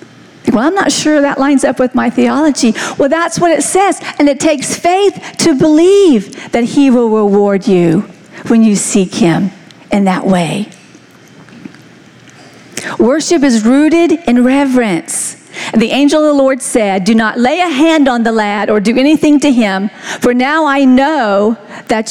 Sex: female